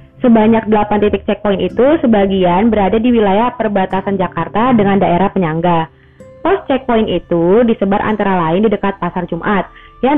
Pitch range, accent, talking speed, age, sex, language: 190-240 Hz, native, 145 wpm, 20-39, female, Indonesian